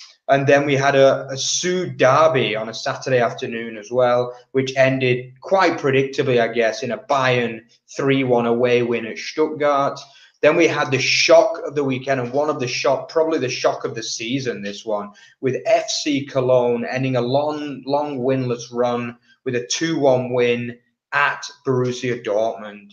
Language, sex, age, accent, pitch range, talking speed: English, male, 20-39, British, 120-135 Hz, 170 wpm